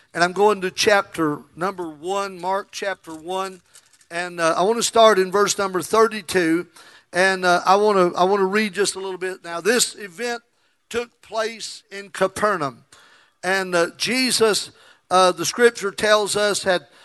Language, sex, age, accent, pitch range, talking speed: English, male, 50-69, American, 185-220 Hz, 165 wpm